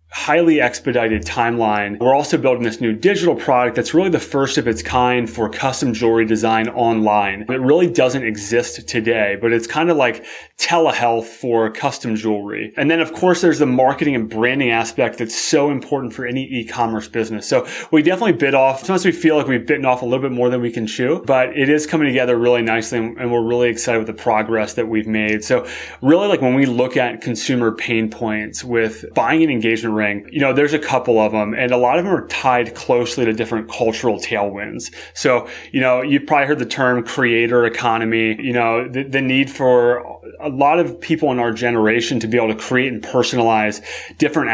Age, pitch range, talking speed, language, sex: 30-49, 110-130 Hz, 210 wpm, English, male